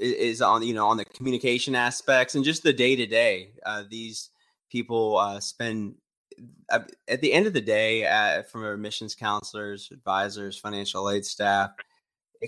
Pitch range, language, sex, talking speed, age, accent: 100-125 Hz, English, male, 160 wpm, 20-39, American